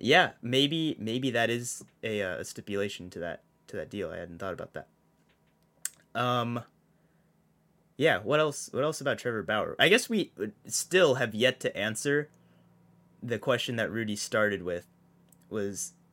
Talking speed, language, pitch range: 160 wpm, English, 100-130 Hz